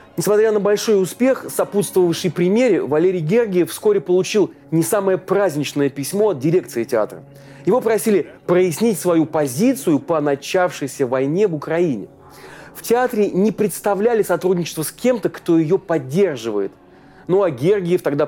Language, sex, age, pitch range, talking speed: Russian, male, 30-49, 150-205 Hz, 135 wpm